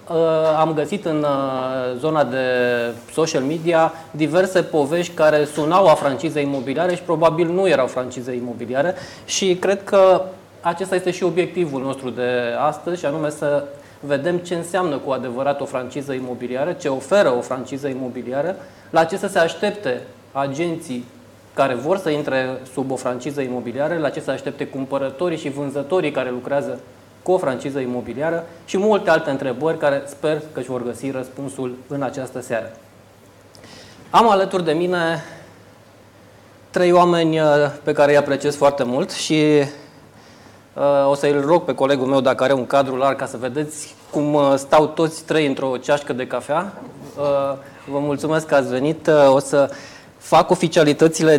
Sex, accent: male, native